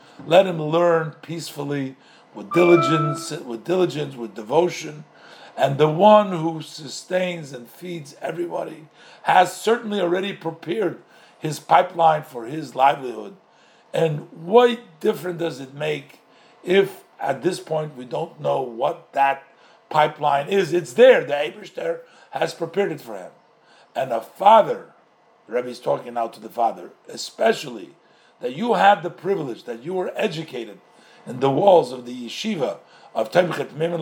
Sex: male